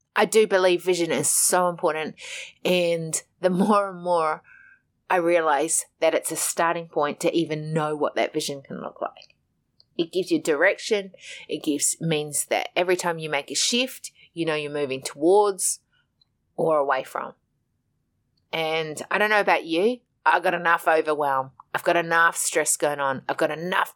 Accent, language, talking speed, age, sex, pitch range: Australian, English, 175 wpm, 30-49, female, 155-200 Hz